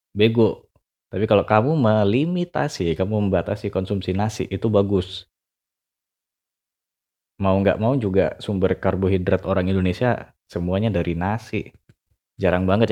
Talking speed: 110 wpm